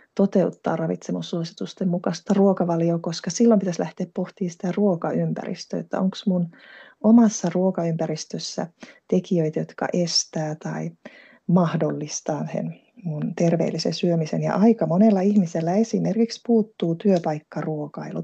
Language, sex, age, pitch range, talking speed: Finnish, female, 20-39, 165-210 Hz, 100 wpm